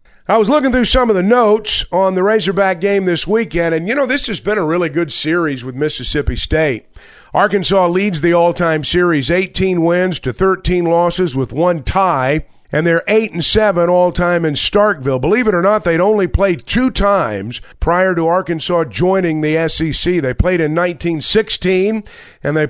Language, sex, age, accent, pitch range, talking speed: English, male, 50-69, American, 155-195 Hz, 180 wpm